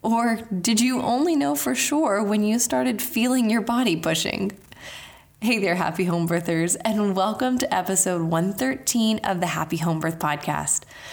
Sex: female